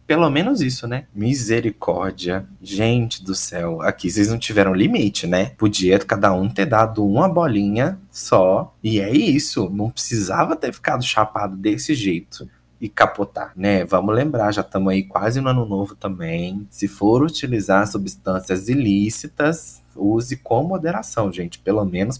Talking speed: 150 wpm